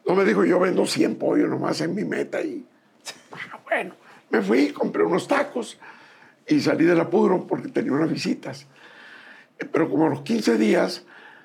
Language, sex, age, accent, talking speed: English, male, 60-79, Mexican, 175 wpm